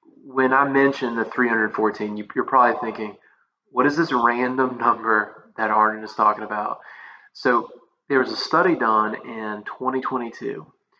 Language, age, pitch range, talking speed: English, 30-49, 110-125 Hz, 140 wpm